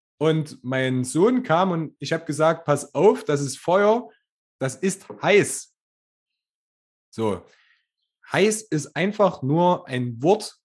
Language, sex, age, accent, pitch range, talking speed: German, male, 30-49, German, 130-185 Hz, 130 wpm